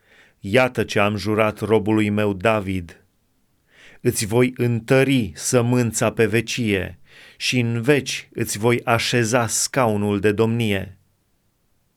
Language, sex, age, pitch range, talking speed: Romanian, male, 30-49, 110-150 Hz, 110 wpm